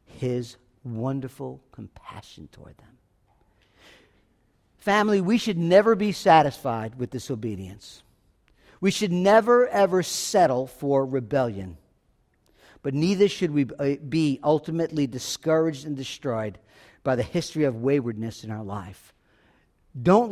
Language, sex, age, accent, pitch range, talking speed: English, male, 50-69, American, 140-230 Hz, 110 wpm